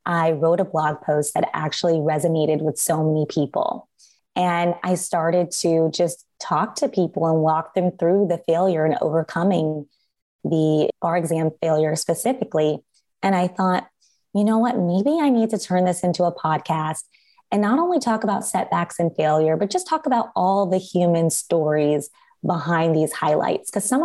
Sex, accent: female, American